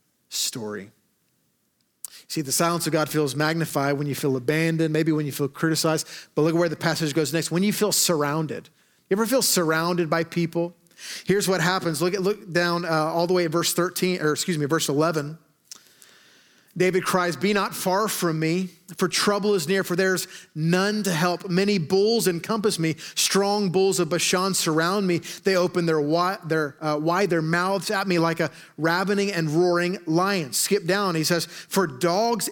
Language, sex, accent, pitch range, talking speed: English, male, American, 160-195 Hz, 180 wpm